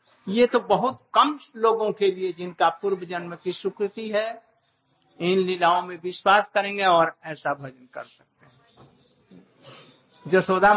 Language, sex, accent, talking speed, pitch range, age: Hindi, male, native, 140 wpm, 180-215 Hz, 60-79